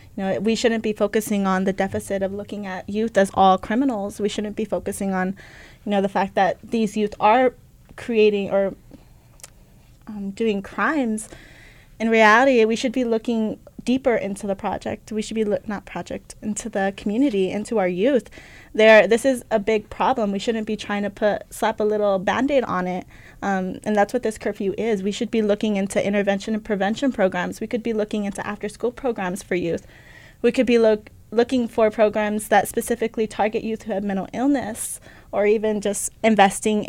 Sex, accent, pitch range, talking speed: female, American, 195-225 Hz, 190 wpm